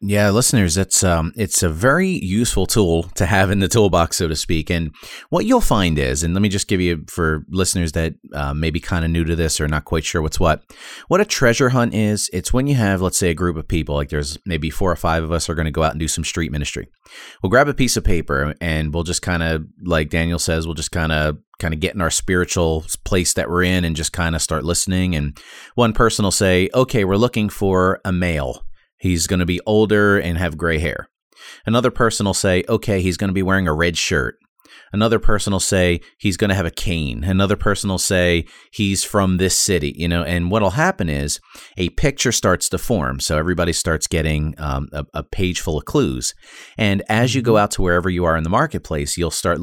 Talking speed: 240 wpm